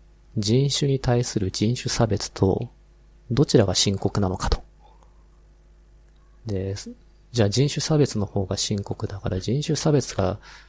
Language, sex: Japanese, male